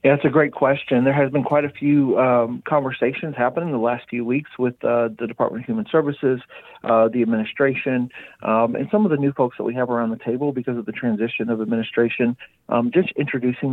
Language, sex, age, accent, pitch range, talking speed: English, male, 40-59, American, 115-140 Hz, 220 wpm